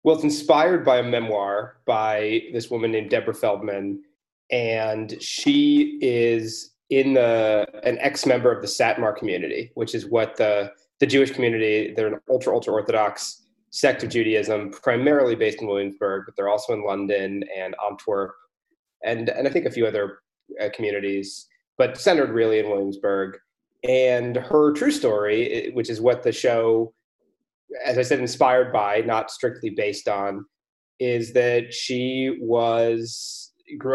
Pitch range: 105-130 Hz